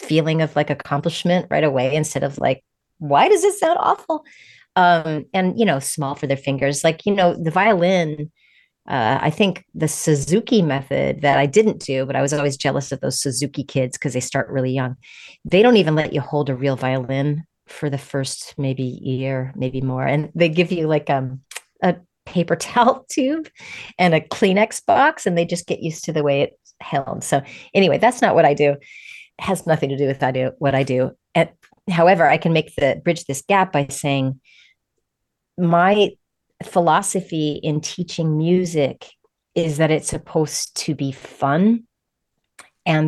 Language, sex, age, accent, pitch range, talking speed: English, female, 30-49, American, 140-190 Hz, 185 wpm